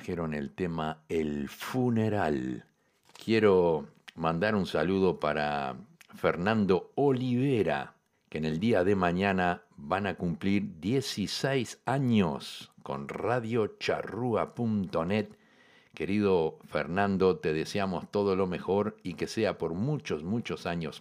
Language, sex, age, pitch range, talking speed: Spanish, male, 60-79, 80-115 Hz, 115 wpm